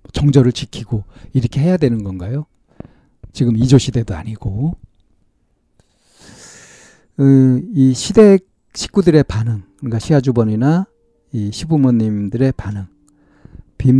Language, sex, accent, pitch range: Korean, male, native, 100-135 Hz